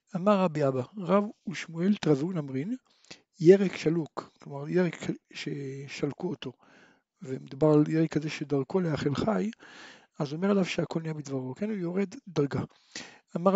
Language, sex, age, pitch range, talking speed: Hebrew, male, 60-79, 150-200 Hz, 135 wpm